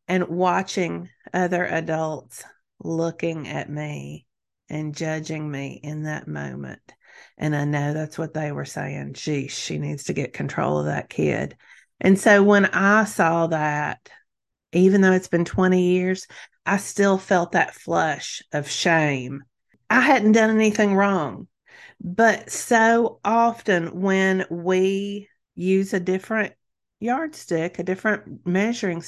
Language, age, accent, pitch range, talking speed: English, 40-59, American, 150-195 Hz, 135 wpm